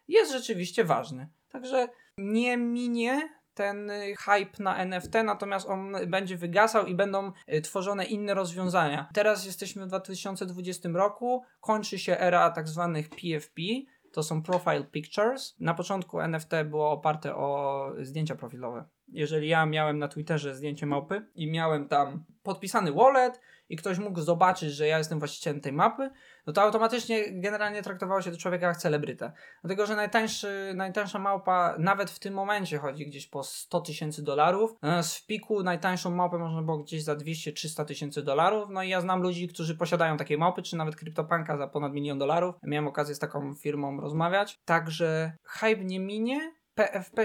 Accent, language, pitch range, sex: native, Polish, 155-205 Hz, male